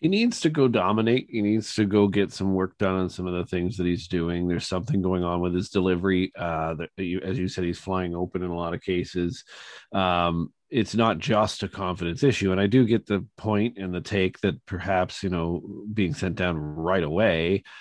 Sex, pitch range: male, 90-110 Hz